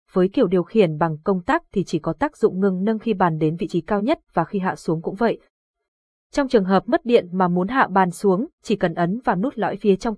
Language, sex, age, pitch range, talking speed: Vietnamese, female, 20-39, 185-240 Hz, 265 wpm